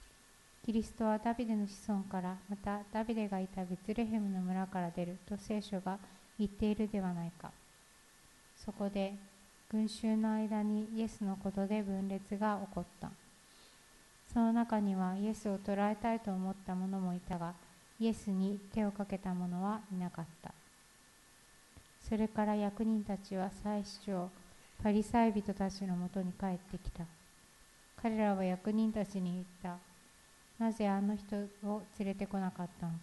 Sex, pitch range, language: female, 190-215 Hz, Japanese